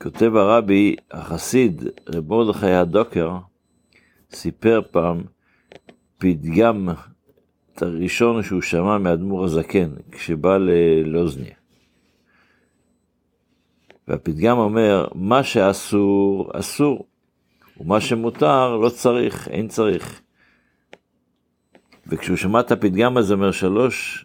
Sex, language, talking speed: male, Hebrew, 85 wpm